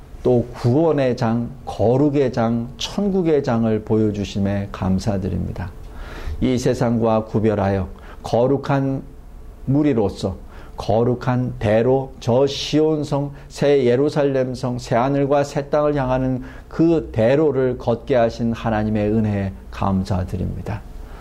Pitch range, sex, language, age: 105-140 Hz, male, Korean, 50-69